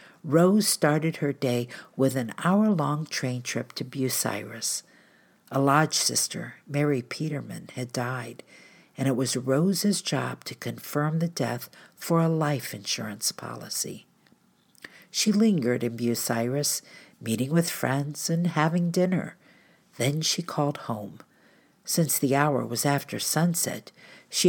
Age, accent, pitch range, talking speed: 50-69, American, 130-175 Hz, 130 wpm